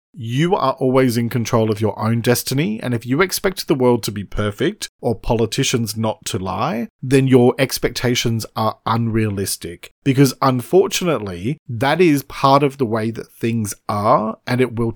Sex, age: male, 40-59